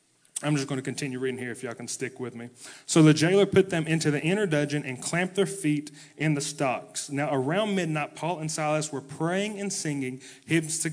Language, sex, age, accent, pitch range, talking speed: English, male, 30-49, American, 135-165 Hz, 220 wpm